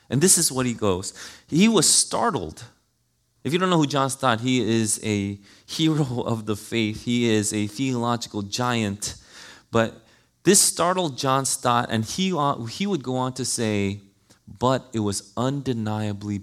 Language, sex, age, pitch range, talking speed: English, male, 30-49, 110-170 Hz, 160 wpm